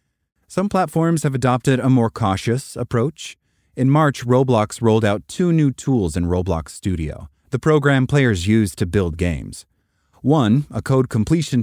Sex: male